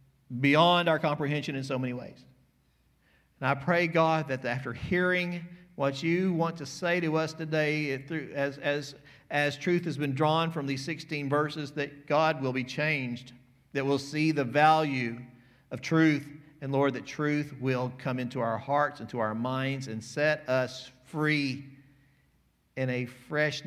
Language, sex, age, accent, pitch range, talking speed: English, male, 50-69, American, 125-150 Hz, 160 wpm